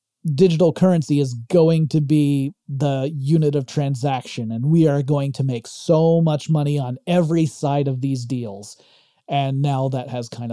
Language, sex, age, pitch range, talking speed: English, male, 30-49, 135-170 Hz, 170 wpm